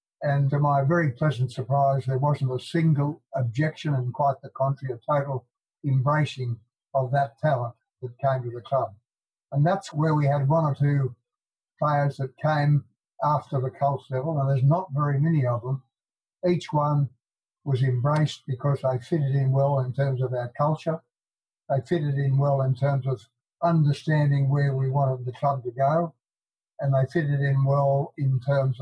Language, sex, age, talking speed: English, male, 60-79, 175 wpm